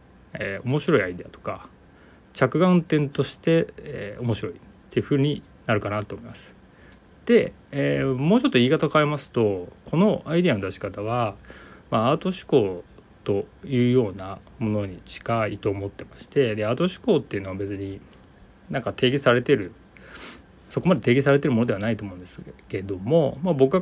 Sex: male